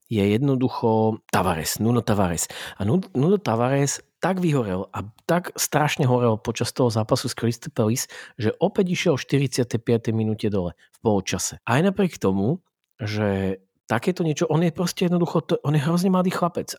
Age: 40-59